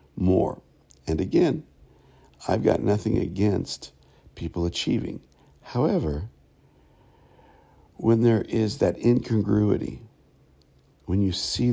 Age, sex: 60-79, male